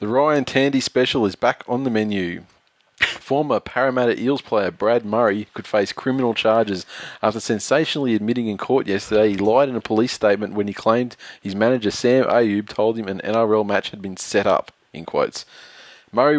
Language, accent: English, Australian